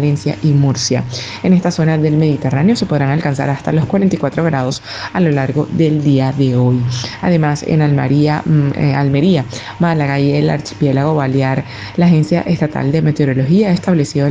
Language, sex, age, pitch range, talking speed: Spanish, female, 20-39, 135-165 Hz, 160 wpm